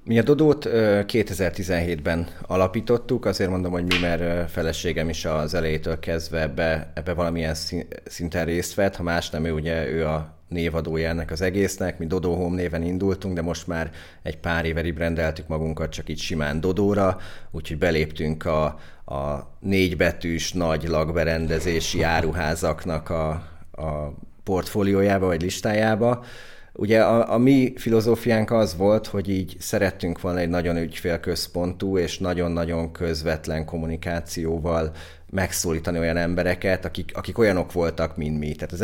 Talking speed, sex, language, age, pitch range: 140 wpm, male, Hungarian, 30-49, 80-95 Hz